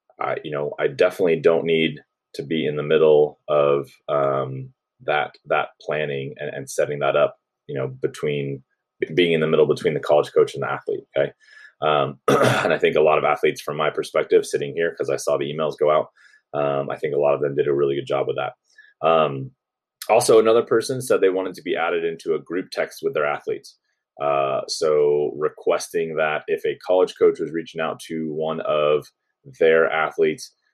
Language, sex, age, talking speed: English, male, 20-39, 205 wpm